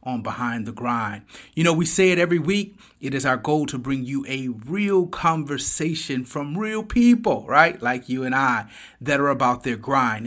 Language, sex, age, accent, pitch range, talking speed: English, male, 30-49, American, 125-160 Hz, 200 wpm